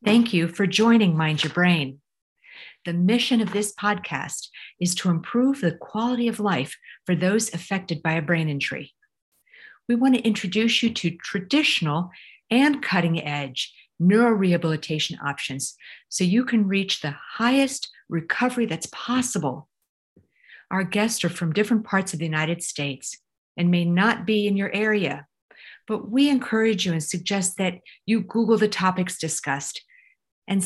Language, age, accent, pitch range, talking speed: English, 50-69, American, 155-210 Hz, 150 wpm